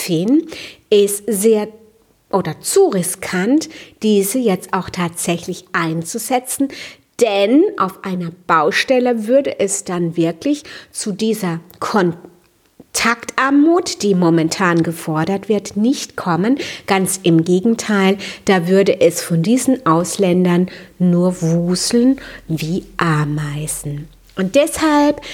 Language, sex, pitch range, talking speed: German, female, 180-240 Hz, 100 wpm